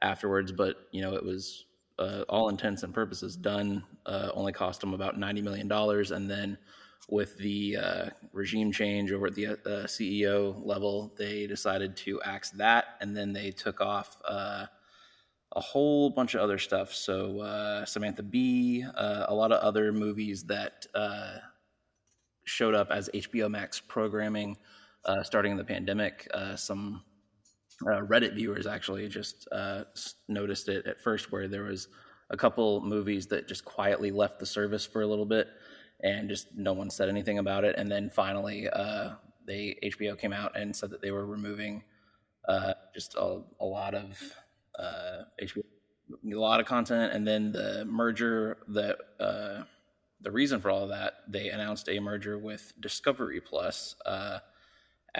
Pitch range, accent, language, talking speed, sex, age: 100-105 Hz, American, English, 170 wpm, male, 20-39